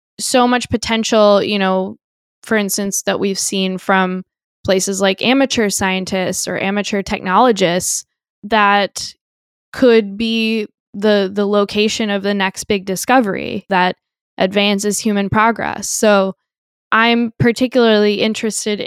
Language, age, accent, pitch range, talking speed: English, 10-29, American, 190-220 Hz, 120 wpm